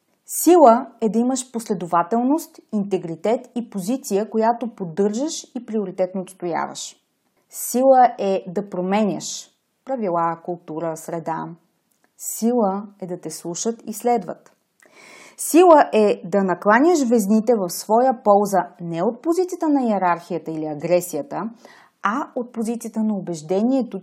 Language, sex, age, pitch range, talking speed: Bulgarian, female, 30-49, 180-255 Hz, 115 wpm